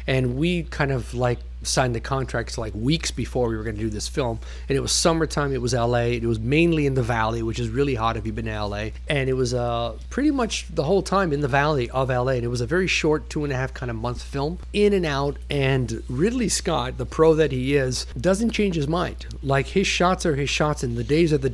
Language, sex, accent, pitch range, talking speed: English, male, American, 120-155 Hz, 260 wpm